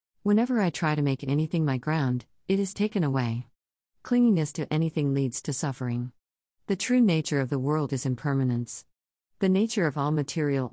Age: 50-69